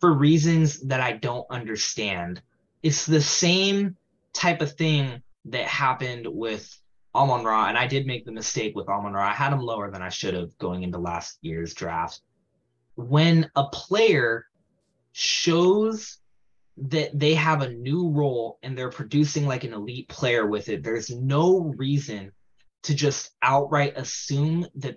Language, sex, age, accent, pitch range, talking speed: English, male, 20-39, American, 105-145 Hz, 160 wpm